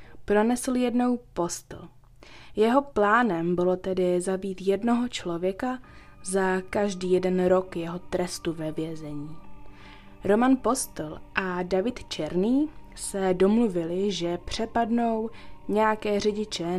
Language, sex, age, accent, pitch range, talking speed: Czech, female, 20-39, native, 170-210 Hz, 105 wpm